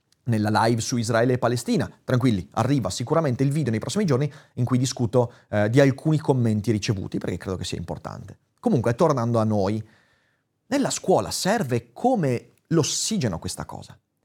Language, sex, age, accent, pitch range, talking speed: Italian, male, 30-49, native, 115-180 Hz, 160 wpm